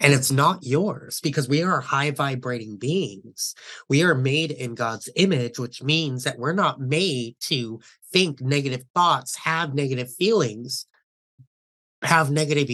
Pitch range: 125-155 Hz